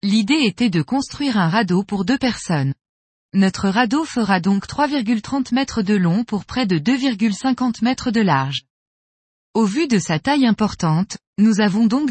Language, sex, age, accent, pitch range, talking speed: French, female, 20-39, French, 185-255 Hz, 165 wpm